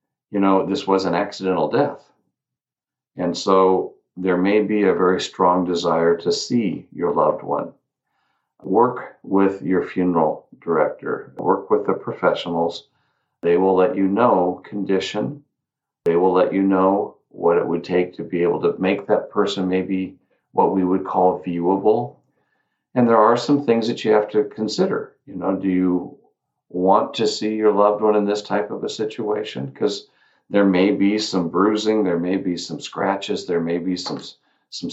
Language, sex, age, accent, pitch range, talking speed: English, male, 50-69, American, 90-105 Hz, 170 wpm